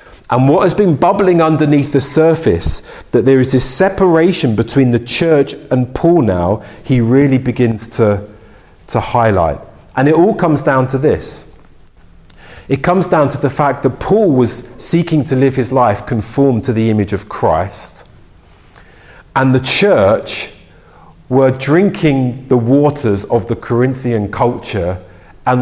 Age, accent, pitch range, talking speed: 40-59, British, 115-155 Hz, 150 wpm